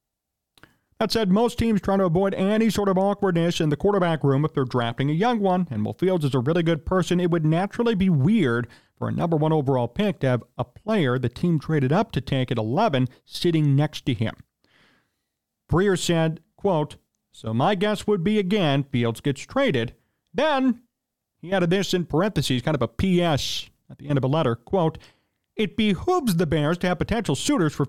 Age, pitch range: 40-59, 130-195 Hz